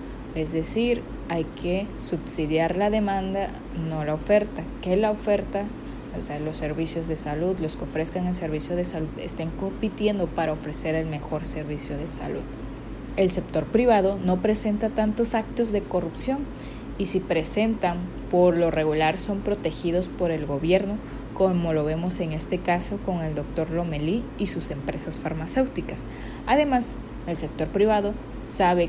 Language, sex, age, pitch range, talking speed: Spanish, female, 20-39, 155-195 Hz, 155 wpm